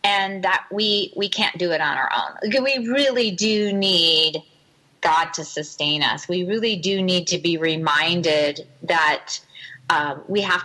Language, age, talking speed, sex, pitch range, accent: English, 30-49, 165 wpm, female, 165-210 Hz, American